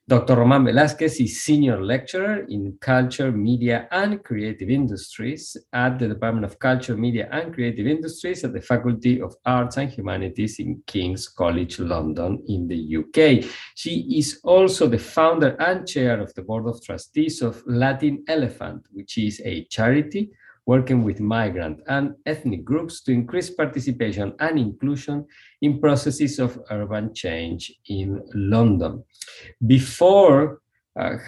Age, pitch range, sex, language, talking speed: 50-69, 105-140 Hz, male, English, 140 wpm